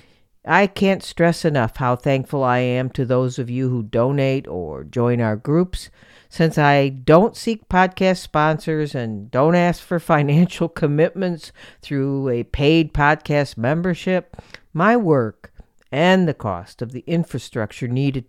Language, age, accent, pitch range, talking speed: English, 50-69, American, 125-165 Hz, 145 wpm